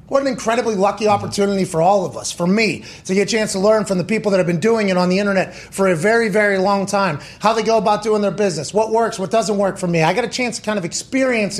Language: English